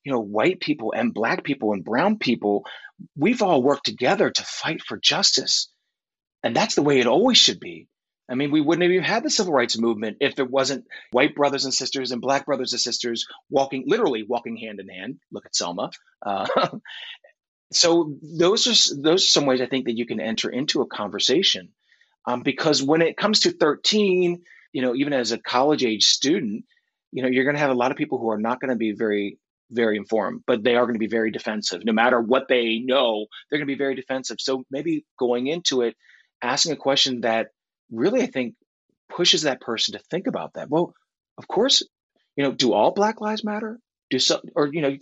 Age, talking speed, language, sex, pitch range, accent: 30-49, 215 wpm, English, male, 115-165 Hz, American